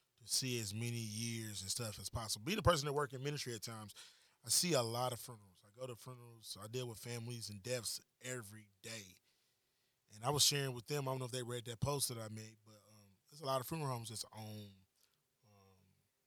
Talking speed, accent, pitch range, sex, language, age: 230 wpm, American, 115-135 Hz, male, English, 20-39